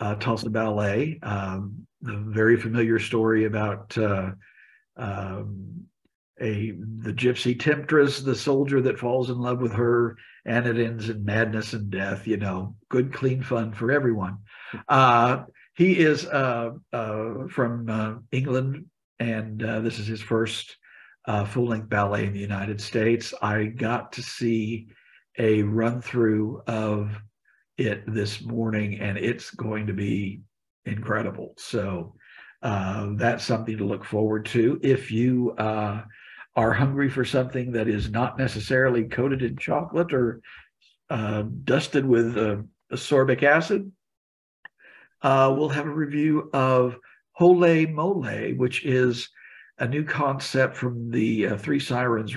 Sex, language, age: male, English, 50-69